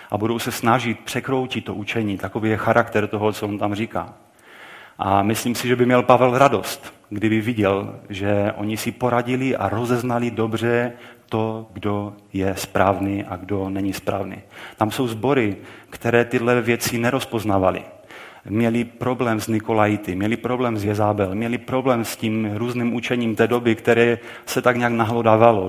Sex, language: male, Czech